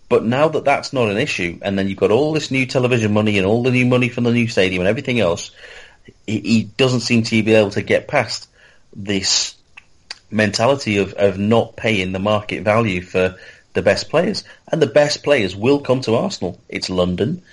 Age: 30-49